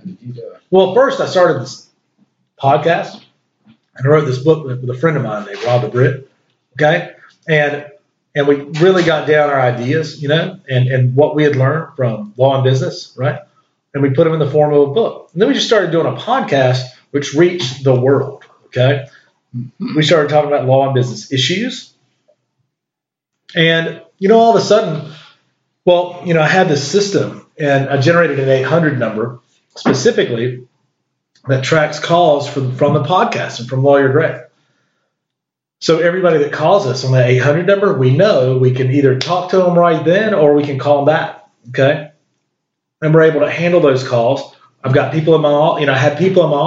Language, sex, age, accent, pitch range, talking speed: English, male, 40-59, American, 130-165 Hz, 190 wpm